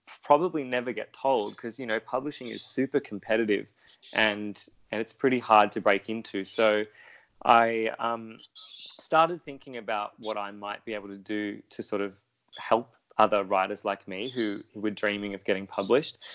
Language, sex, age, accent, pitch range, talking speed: English, male, 20-39, Australian, 105-125 Hz, 175 wpm